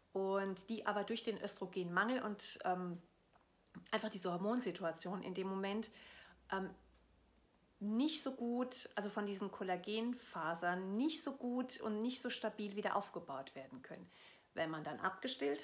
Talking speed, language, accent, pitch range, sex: 140 wpm, German, German, 185-220 Hz, female